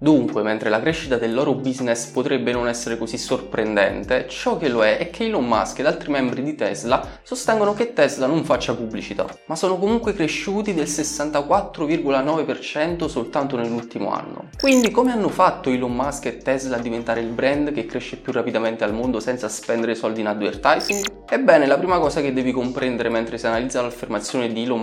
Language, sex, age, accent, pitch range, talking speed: Italian, male, 20-39, native, 125-185 Hz, 185 wpm